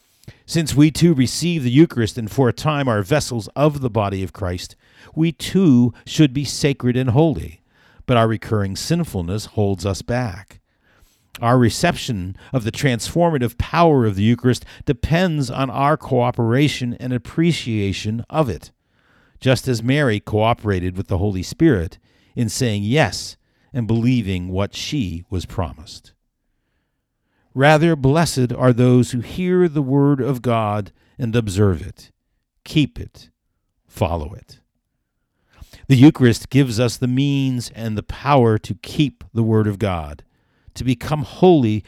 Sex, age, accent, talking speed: male, 50-69, American, 145 wpm